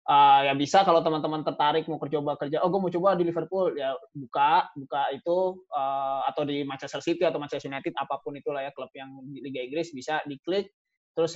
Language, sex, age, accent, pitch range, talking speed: Indonesian, male, 20-39, native, 140-170 Hz, 205 wpm